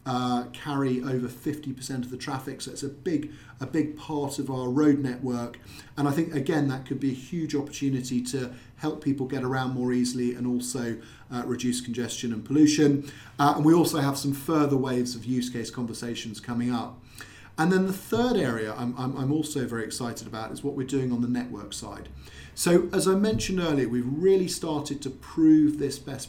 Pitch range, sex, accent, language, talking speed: 120-145 Hz, male, British, English, 195 wpm